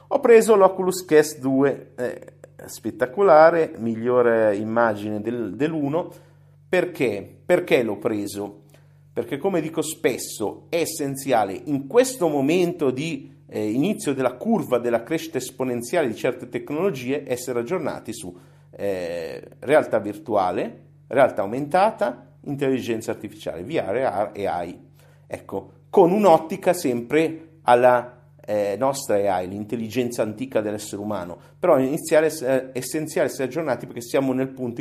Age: 50-69